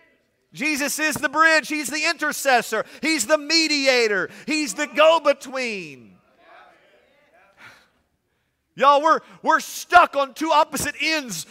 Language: English